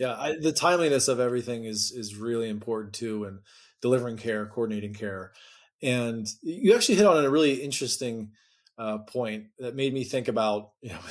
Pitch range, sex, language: 115-145 Hz, male, English